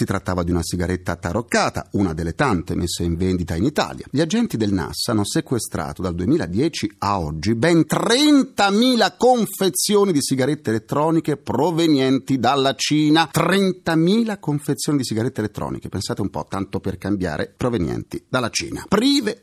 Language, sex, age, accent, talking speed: Italian, male, 40-59, native, 145 wpm